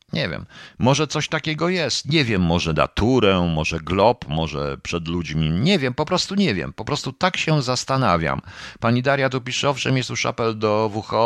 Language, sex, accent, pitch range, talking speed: Polish, male, native, 85-120 Hz, 190 wpm